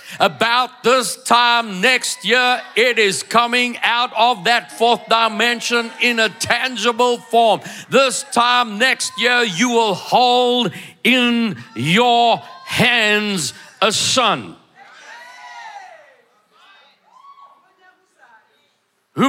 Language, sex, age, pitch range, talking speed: English, male, 60-79, 150-245 Hz, 95 wpm